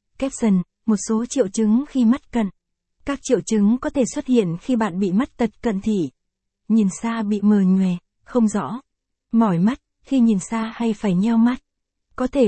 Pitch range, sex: 205-235 Hz, female